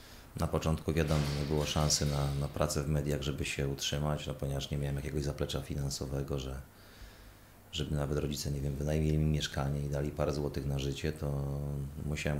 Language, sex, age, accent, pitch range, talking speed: Polish, male, 30-49, native, 70-85 Hz, 175 wpm